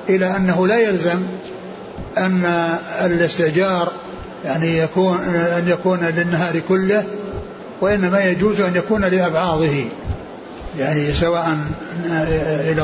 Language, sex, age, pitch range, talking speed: Arabic, male, 60-79, 170-195 Hz, 95 wpm